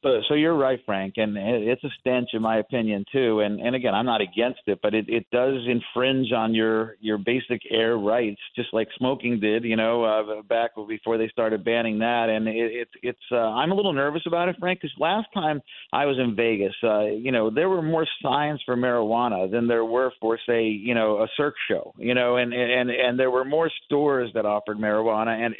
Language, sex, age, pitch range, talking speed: English, male, 50-69, 115-145 Hz, 225 wpm